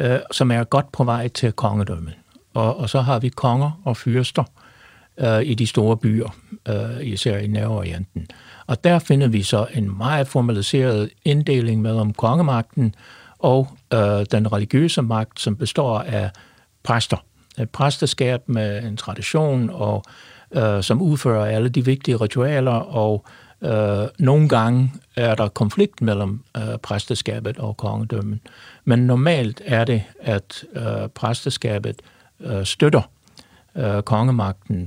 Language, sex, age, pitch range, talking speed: Danish, male, 60-79, 105-130 Hz, 140 wpm